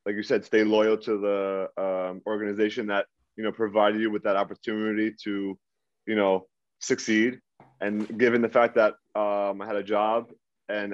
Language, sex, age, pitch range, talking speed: English, male, 20-39, 100-110 Hz, 175 wpm